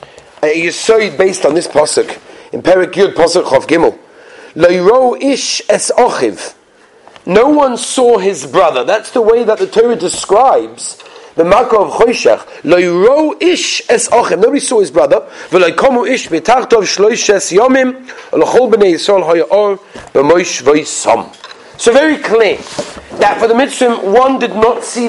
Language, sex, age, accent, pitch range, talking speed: English, male, 40-59, British, 200-290 Hz, 105 wpm